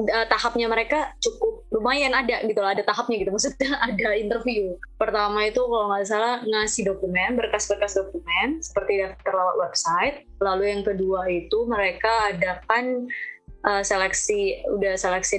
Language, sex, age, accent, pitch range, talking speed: English, female, 20-39, Indonesian, 185-240 Hz, 135 wpm